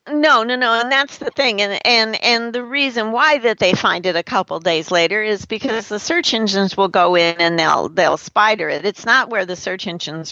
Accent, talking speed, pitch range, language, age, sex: American, 240 wpm, 155-195 Hz, English, 50-69, female